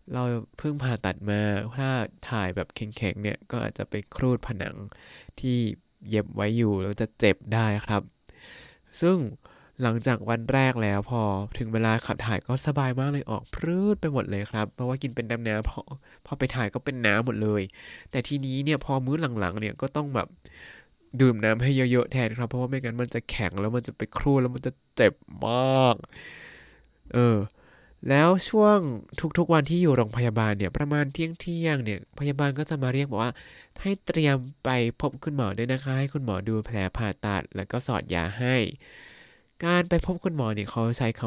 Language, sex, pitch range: Thai, male, 110-135 Hz